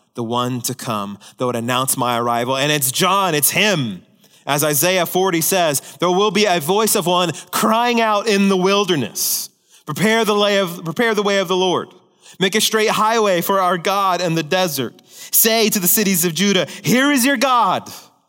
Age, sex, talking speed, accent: 30-49, male, 185 wpm, American